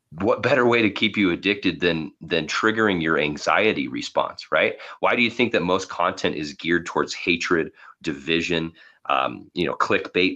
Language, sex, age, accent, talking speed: English, male, 30-49, American, 175 wpm